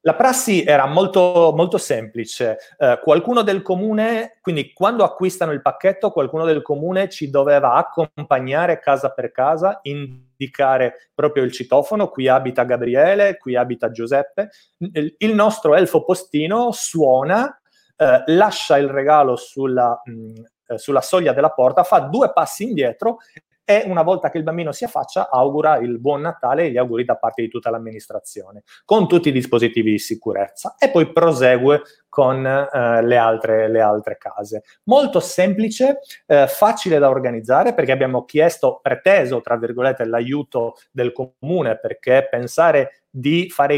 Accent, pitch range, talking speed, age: native, 125-180 Hz, 145 wpm, 30-49